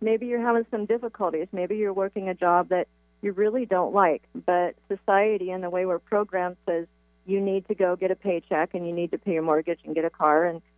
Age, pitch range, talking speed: 40-59, 180-235 Hz, 235 wpm